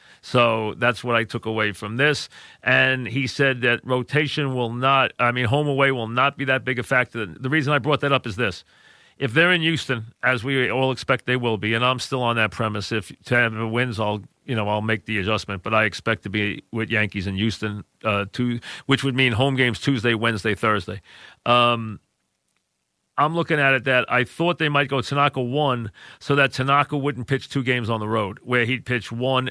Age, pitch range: 40-59, 115-135 Hz